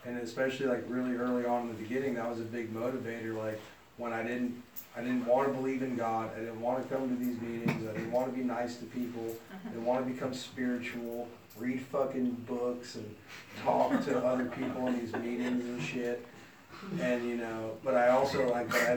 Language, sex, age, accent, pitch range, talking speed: English, male, 30-49, American, 110-125 Hz, 220 wpm